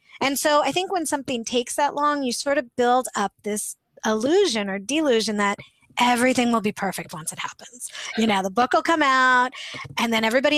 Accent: American